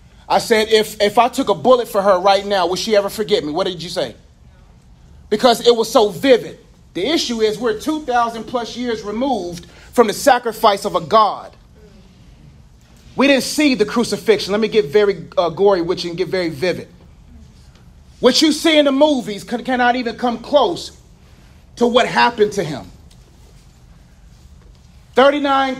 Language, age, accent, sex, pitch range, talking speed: English, 30-49, American, male, 190-255 Hz, 170 wpm